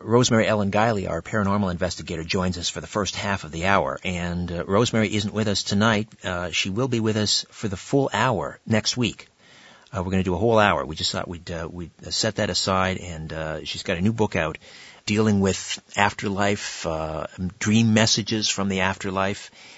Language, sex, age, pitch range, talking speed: English, male, 50-69, 90-110 Hz, 205 wpm